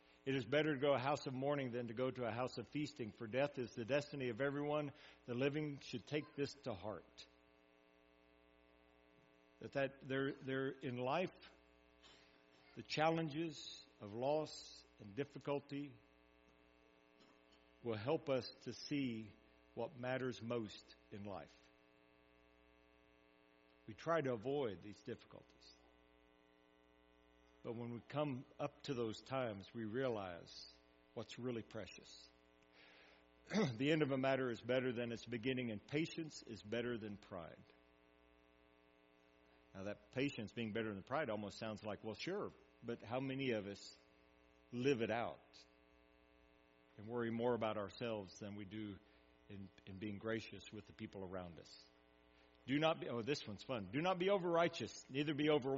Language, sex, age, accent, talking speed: English, male, 60-79, American, 150 wpm